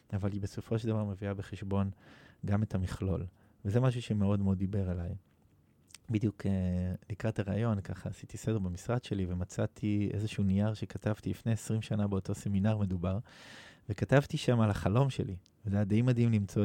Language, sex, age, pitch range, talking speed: Hebrew, male, 20-39, 95-110 Hz, 160 wpm